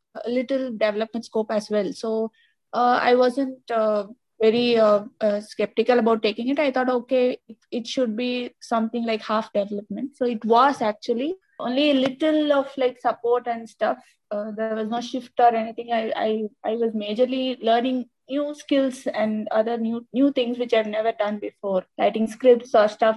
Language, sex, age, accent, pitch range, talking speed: English, female, 20-39, Indian, 225-265 Hz, 180 wpm